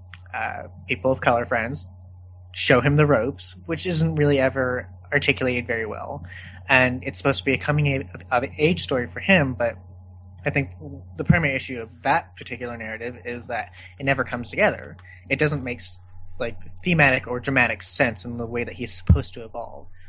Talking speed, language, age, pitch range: 180 wpm, English, 20-39, 90-140 Hz